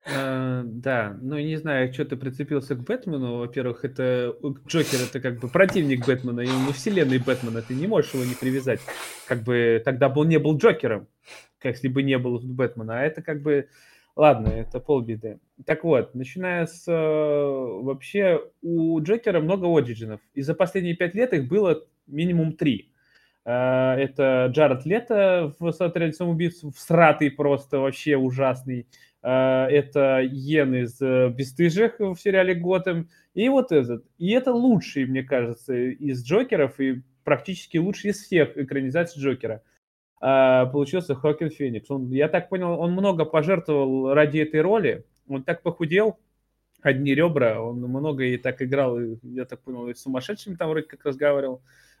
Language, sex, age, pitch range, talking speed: Russian, male, 20-39, 130-165 Hz, 160 wpm